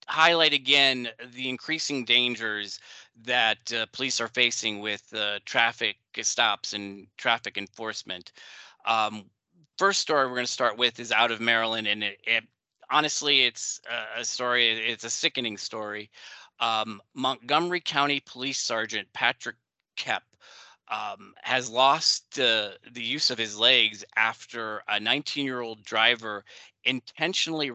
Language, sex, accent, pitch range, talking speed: English, male, American, 110-135 Hz, 135 wpm